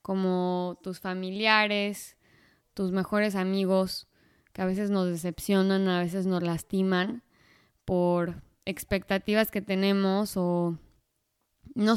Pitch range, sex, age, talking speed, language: 185-205 Hz, female, 20-39, 105 wpm, Spanish